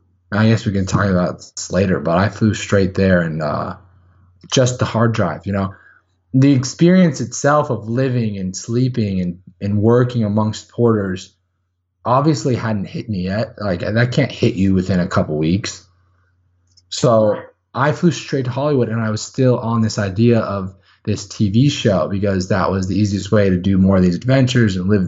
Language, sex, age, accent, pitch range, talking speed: English, male, 20-39, American, 95-120 Hz, 180 wpm